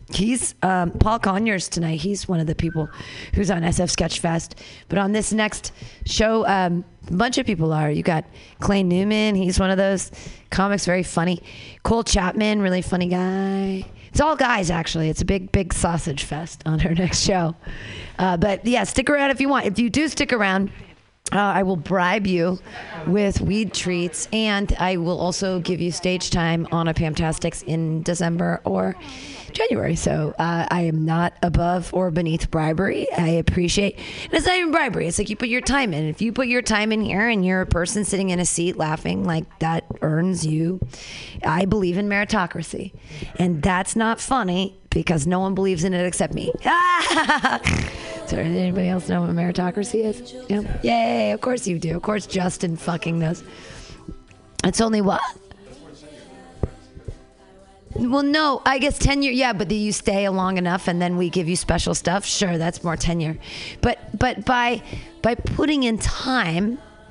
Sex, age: female, 30-49